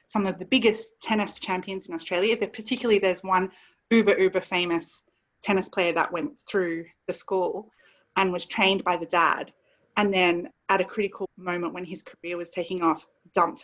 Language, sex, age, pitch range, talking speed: English, female, 20-39, 180-225 Hz, 180 wpm